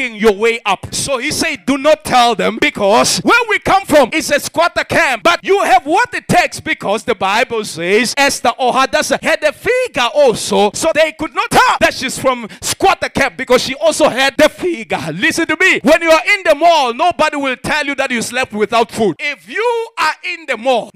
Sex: male